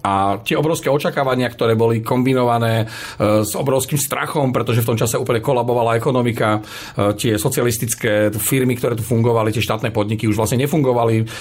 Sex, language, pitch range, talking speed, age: male, Slovak, 110-135 Hz, 155 wpm, 40-59